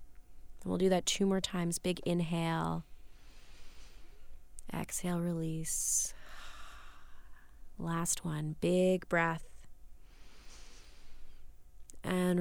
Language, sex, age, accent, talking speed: English, female, 30-49, American, 75 wpm